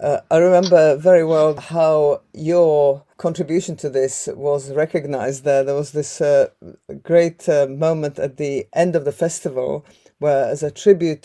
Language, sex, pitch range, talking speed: Slovak, female, 145-175 Hz, 160 wpm